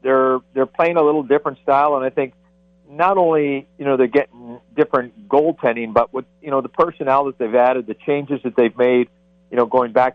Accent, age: American, 50-69